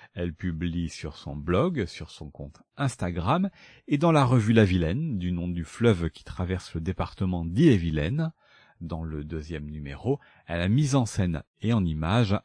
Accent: French